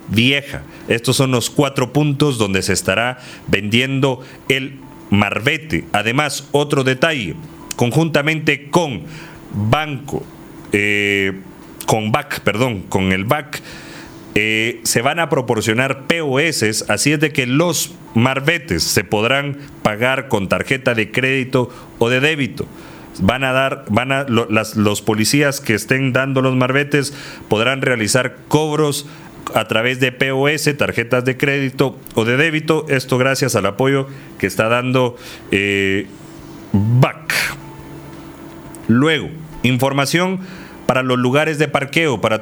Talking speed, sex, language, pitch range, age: 130 wpm, male, Spanish, 115-145 Hz, 40-59